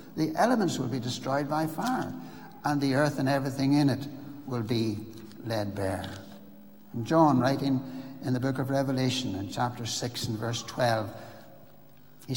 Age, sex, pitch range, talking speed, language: 60-79, male, 115-155 Hz, 160 wpm, English